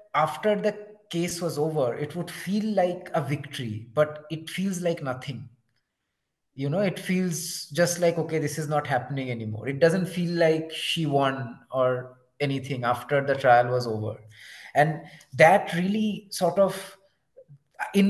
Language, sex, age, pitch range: English, male, 30-49, 135-170 Hz